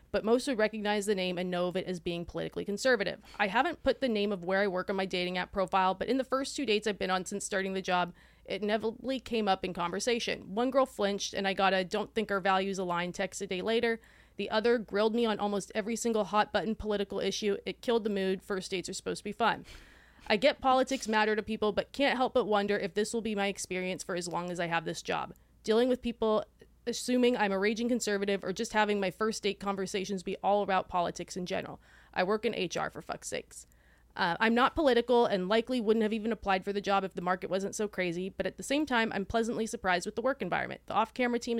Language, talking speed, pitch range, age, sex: English, 250 wpm, 190-230 Hz, 30-49, female